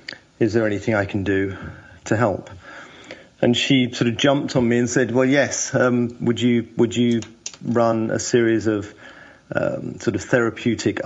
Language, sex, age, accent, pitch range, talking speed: English, male, 50-69, British, 105-120 Hz, 175 wpm